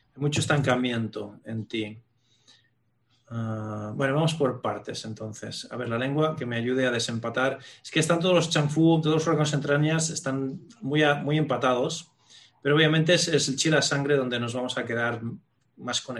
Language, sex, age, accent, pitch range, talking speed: Spanish, male, 30-49, Spanish, 120-150 Hz, 180 wpm